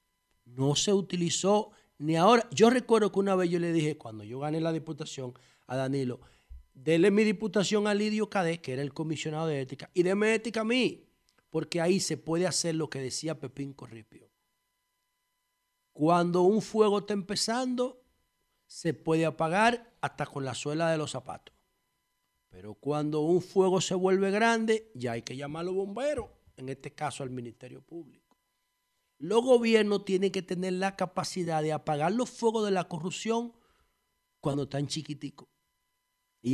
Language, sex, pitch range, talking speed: Spanish, male, 145-215 Hz, 165 wpm